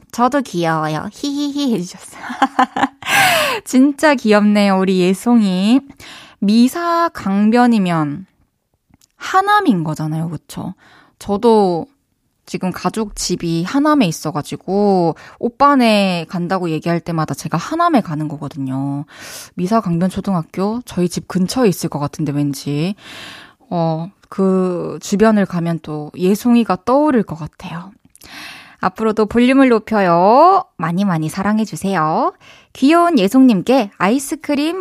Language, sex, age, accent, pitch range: Korean, female, 20-39, native, 175-260 Hz